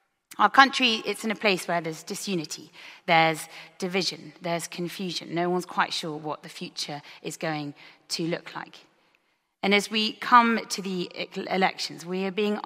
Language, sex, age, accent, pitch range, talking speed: English, female, 30-49, British, 165-205 Hz, 165 wpm